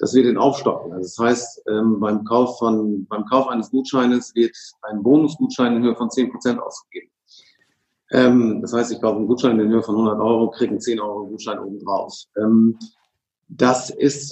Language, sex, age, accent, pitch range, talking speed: German, male, 50-69, German, 115-130 Hz, 195 wpm